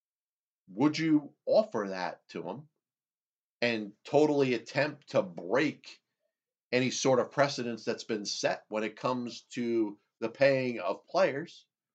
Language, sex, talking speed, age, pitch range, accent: English, male, 130 wpm, 40-59, 115-160 Hz, American